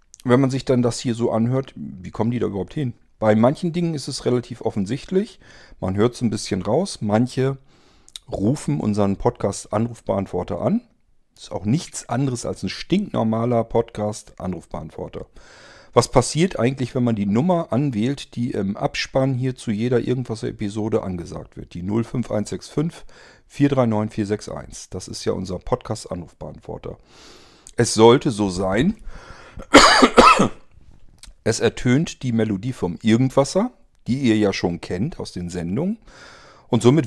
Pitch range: 105-130 Hz